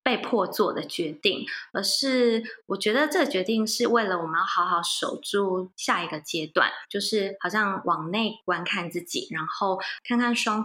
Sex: female